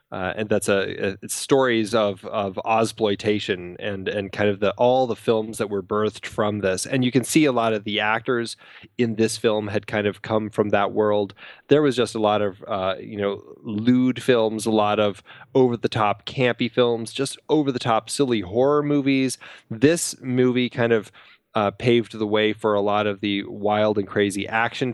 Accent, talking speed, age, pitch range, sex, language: American, 205 wpm, 20-39, 105-125 Hz, male, English